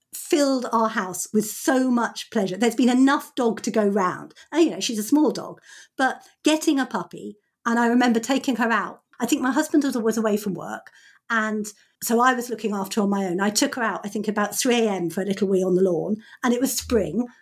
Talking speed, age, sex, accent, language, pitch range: 235 wpm, 50-69, female, British, English, 210-275 Hz